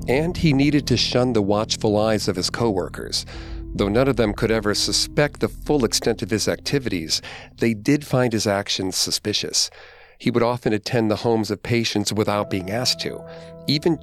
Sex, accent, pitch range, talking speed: male, American, 100-120 Hz, 185 wpm